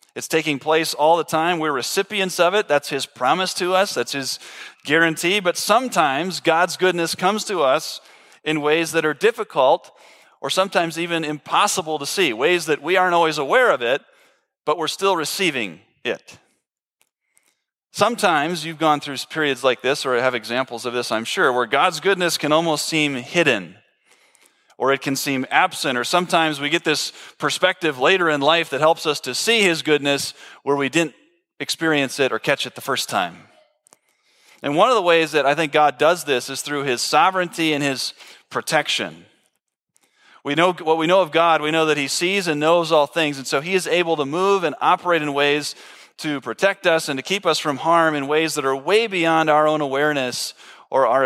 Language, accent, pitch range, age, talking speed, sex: English, American, 140-175 Hz, 30-49, 195 wpm, male